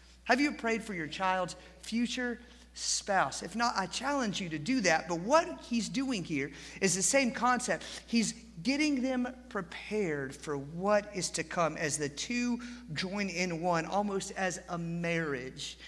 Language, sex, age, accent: English, male, 50-69, American